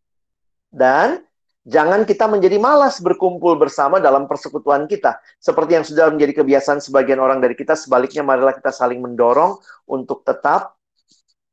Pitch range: 135-180 Hz